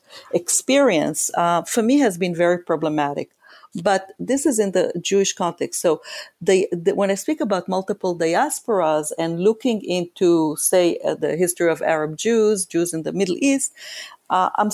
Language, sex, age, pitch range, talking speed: English, female, 40-59, 170-210 Hz, 160 wpm